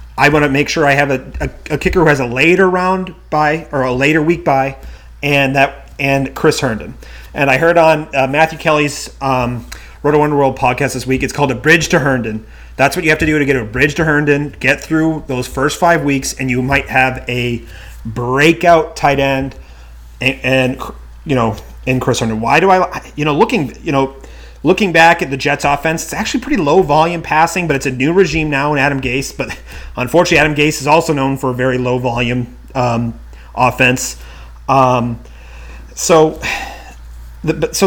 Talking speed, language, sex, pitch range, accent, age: 195 wpm, English, male, 125-160 Hz, American, 30-49